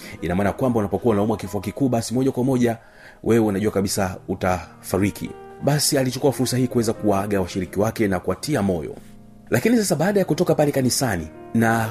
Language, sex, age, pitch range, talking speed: Swahili, male, 40-59, 100-125 Hz, 160 wpm